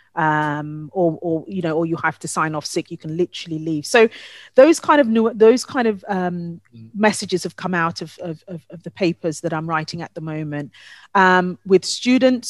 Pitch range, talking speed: 165-200 Hz, 205 wpm